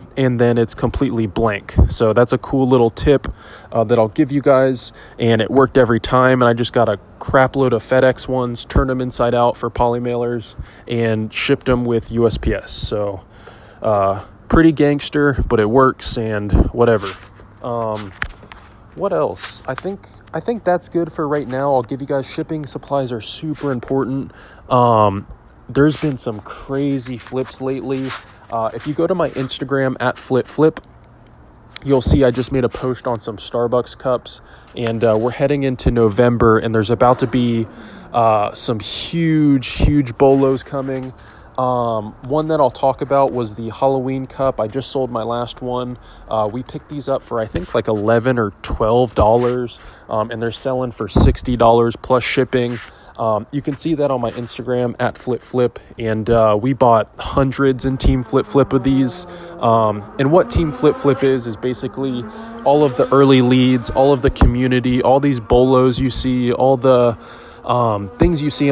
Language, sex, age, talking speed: English, male, 20-39, 180 wpm